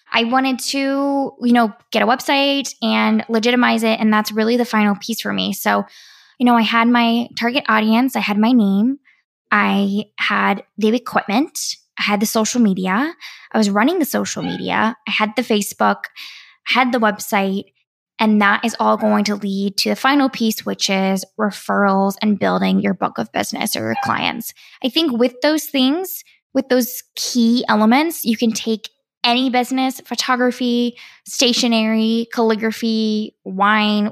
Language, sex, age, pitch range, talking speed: English, female, 10-29, 215-260 Hz, 165 wpm